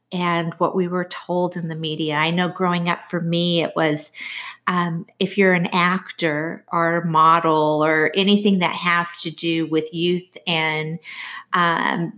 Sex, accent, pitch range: female, American, 165-190 Hz